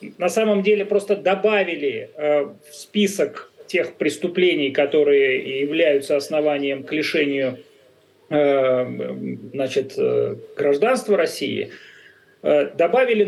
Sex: male